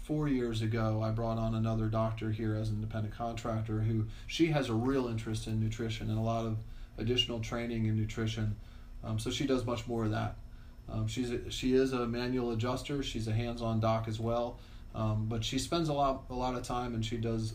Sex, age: male, 30-49